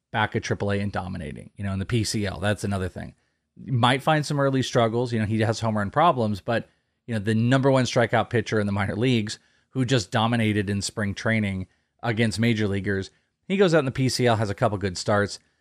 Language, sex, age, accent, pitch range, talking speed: English, male, 30-49, American, 105-130 Hz, 225 wpm